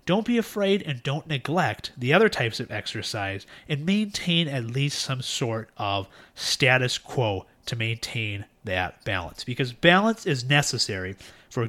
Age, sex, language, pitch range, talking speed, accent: 30-49, male, English, 120-165 Hz, 150 wpm, American